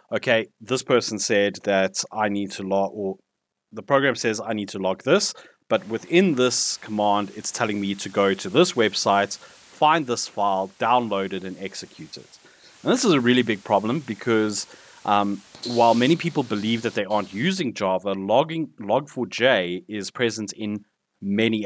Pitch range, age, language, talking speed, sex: 100-120 Hz, 30-49, English, 170 wpm, male